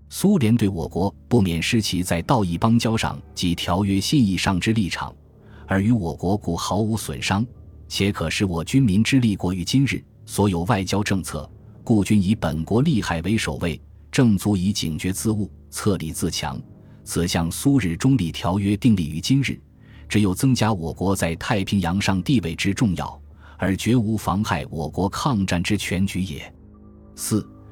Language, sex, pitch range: Chinese, male, 85-110 Hz